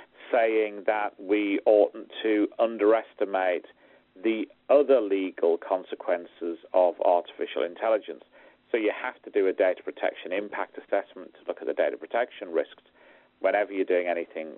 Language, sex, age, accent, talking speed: English, male, 40-59, British, 140 wpm